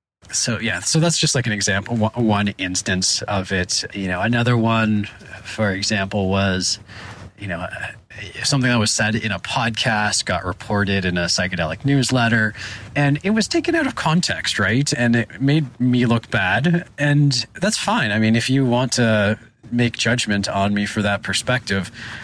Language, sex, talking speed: English, male, 175 wpm